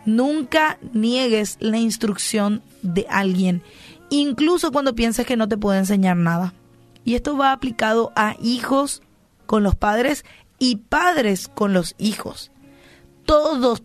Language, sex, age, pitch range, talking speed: Spanish, female, 20-39, 195-255 Hz, 130 wpm